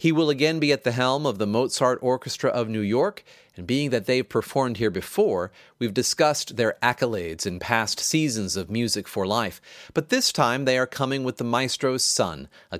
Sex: male